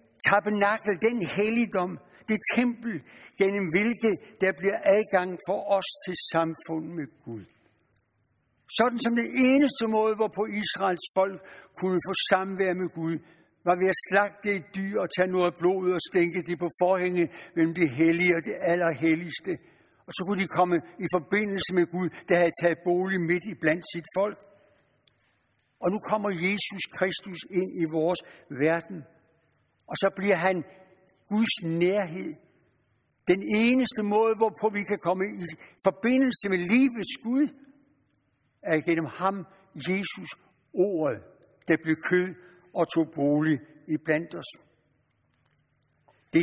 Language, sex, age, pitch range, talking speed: Danish, male, 60-79, 165-200 Hz, 140 wpm